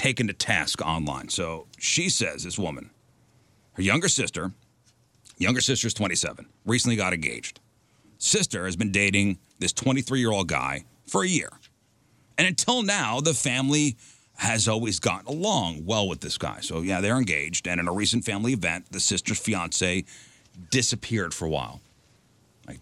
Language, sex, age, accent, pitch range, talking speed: English, male, 40-59, American, 95-120 Hz, 160 wpm